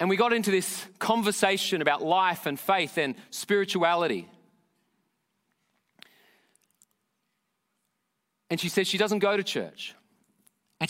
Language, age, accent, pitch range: English, 40-59, Australian, 170-210 Hz